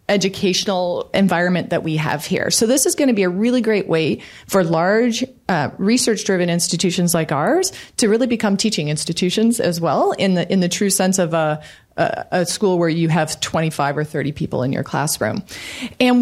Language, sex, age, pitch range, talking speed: English, female, 30-49, 175-225 Hz, 190 wpm